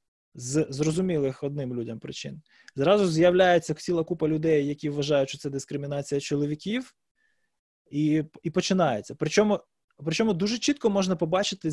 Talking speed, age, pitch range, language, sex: 130 wpm, 20-39, 140-175 Hz, Ukrainian, male